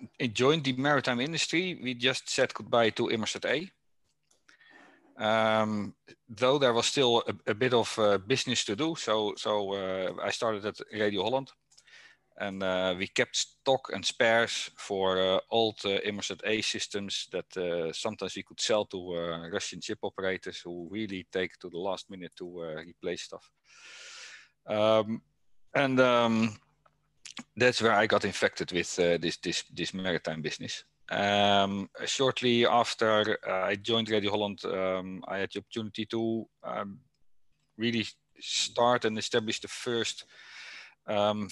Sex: male